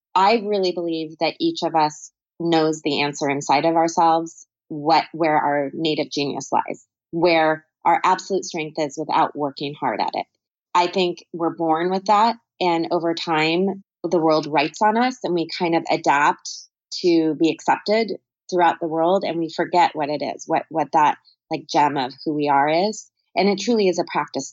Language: English